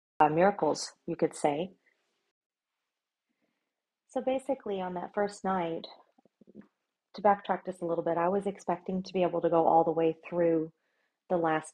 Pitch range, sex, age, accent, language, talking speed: 155-180 Hz, female, 40-59, American, English, 160 wpm